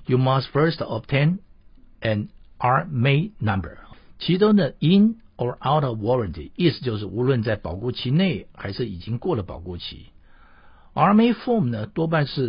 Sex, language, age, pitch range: male, Chinese, 60-79, 100-155 Hz